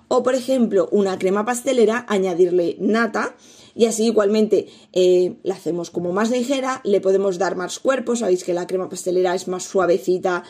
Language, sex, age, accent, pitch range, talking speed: Spanish, female, 20-39, Spanish, 185-220 Hz, 170 wpm